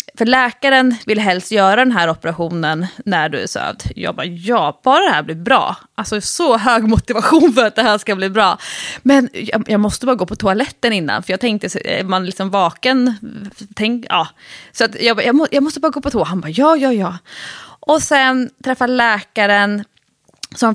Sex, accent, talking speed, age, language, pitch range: female, Swedish, 200 wpm, 20-39, English, 205-260 Hz